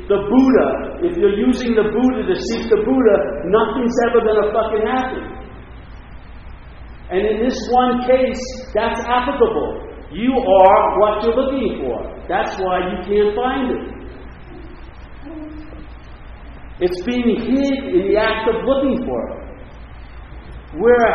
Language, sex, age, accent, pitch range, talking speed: English, male, 50-69, American, 195-285 Hz, 130 wpm